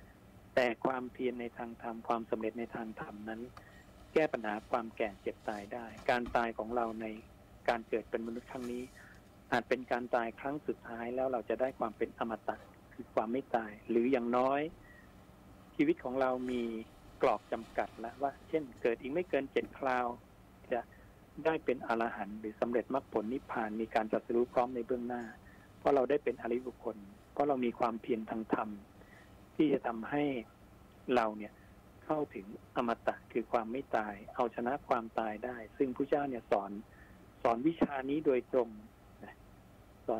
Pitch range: 105-125 Hz